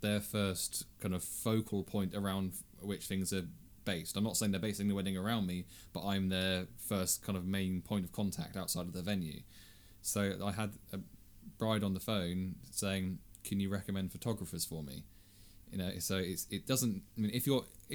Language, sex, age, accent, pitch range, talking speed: English, male, 20-39, British, 90-100 Hz, 195 wpm